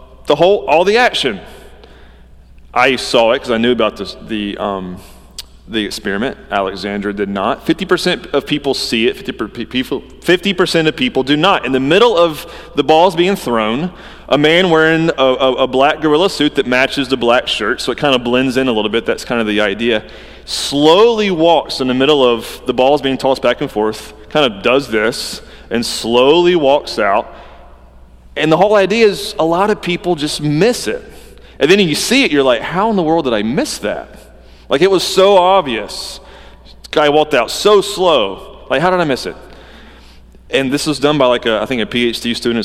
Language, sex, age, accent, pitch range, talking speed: English, male, 30-49, American, 110-170 Hz, 210 wpm